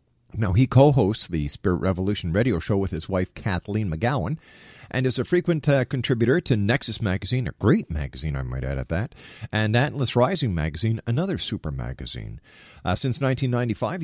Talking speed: 170 wpm